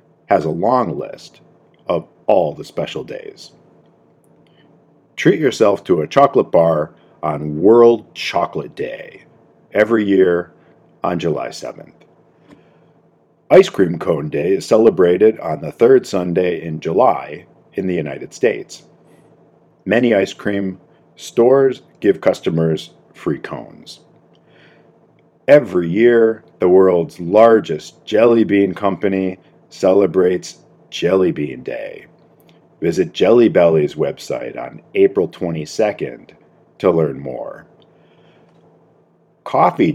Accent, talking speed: American, 105 wpm